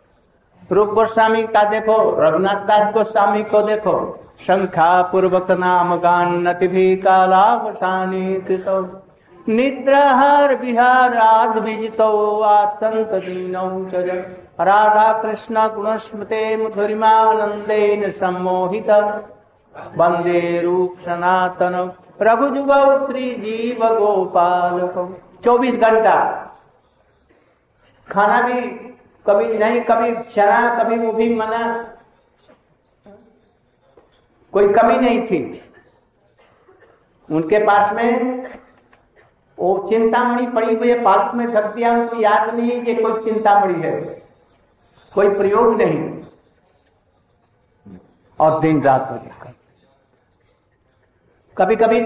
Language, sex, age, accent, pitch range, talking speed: Hindi, male, 60-79, native, 185-225 Hz, 80 wpm